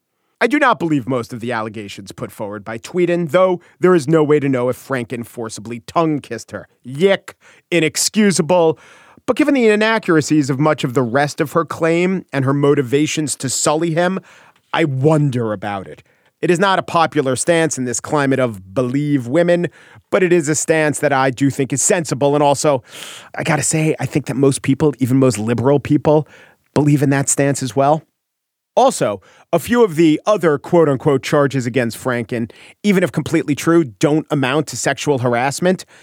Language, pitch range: English, 135-170 Hz